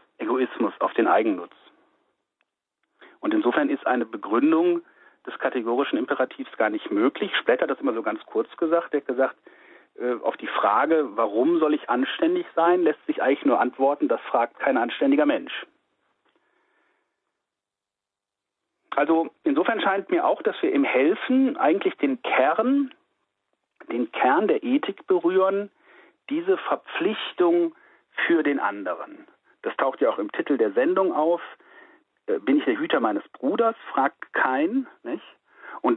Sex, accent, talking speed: male, German, 140 wpm